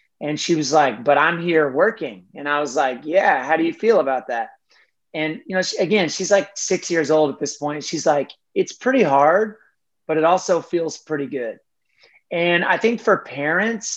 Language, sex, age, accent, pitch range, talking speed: English, male, 30-49, American, 150-190 Hz, 205 wpm